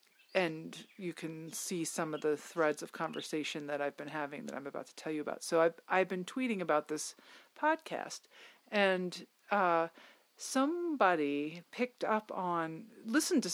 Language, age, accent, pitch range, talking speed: English, 50-69, American, 155-190 Hz, 165 wpm